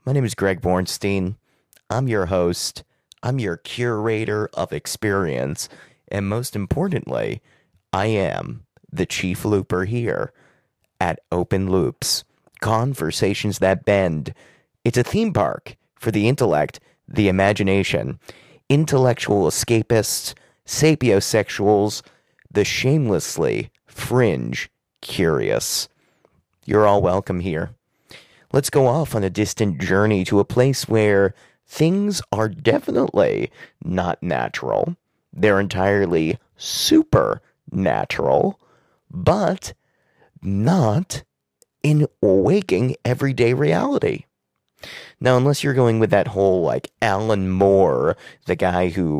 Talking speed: 105 wpm